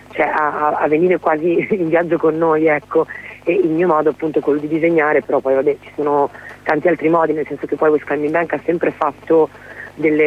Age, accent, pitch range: 30-49, native, 140-160 Hz